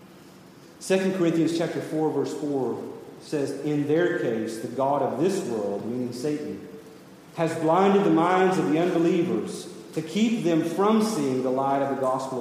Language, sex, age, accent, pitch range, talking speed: English, male, 40-59, American, 130-160 Hz, 165 wpm